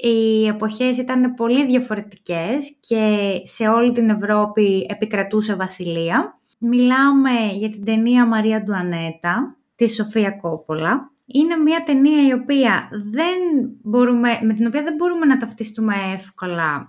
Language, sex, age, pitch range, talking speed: Greek, female, 20-39, 200-250 Hz, 130 wpm